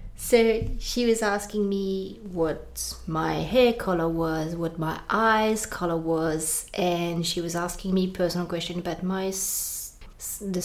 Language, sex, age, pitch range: English, female, 30-49, 180-225 Hz